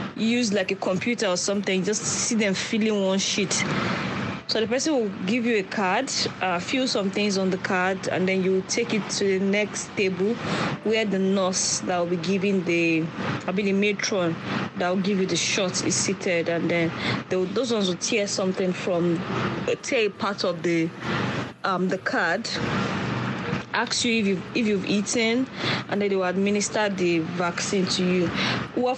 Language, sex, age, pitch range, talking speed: English, female, 20-39, 180-210 Hz, 185 wpm